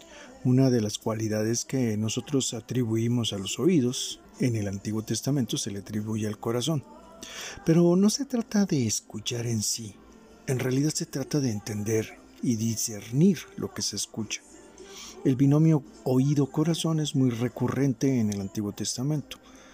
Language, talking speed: Spanish, 150 wpm